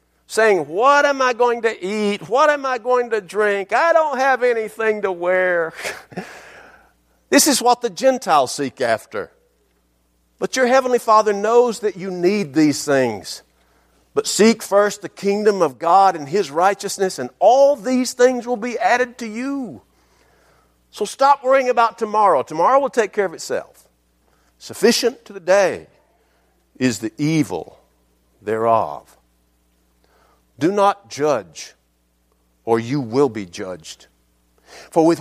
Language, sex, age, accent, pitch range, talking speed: English, male, 50-69, American, 150-255 Hz, 145 wpm